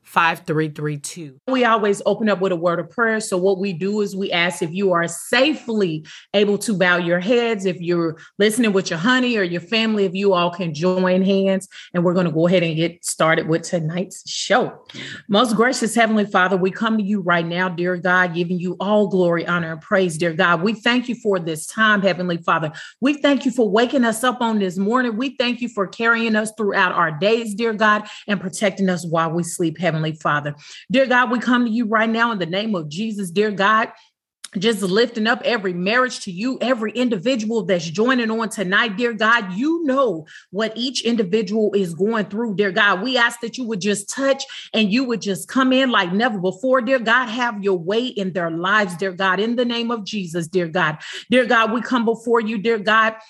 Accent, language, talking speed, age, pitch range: American, English, 215 wpm, 30-49, 185-235 Hz